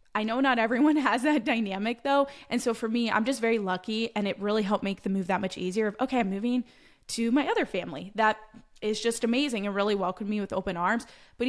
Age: 20-39